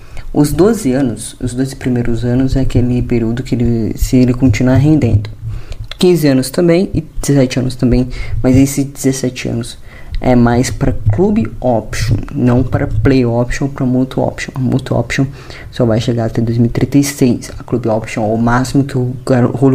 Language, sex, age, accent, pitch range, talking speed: Portuguese, female, 20-39, Brazilian, 115-135 Hz, 165 wpm